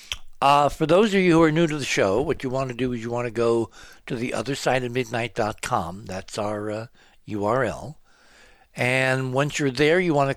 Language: English